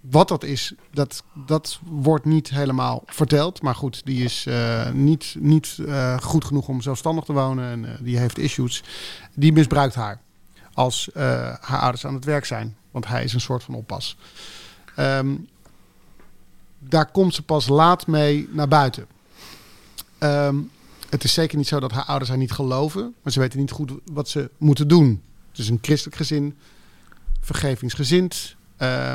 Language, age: Dutch, 50-69